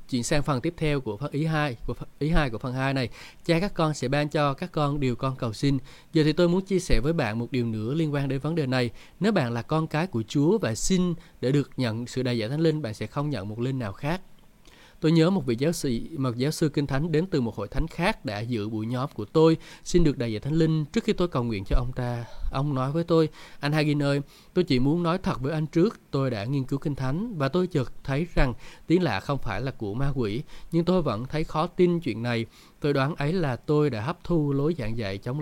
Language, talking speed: Vietnamese, 270 wpm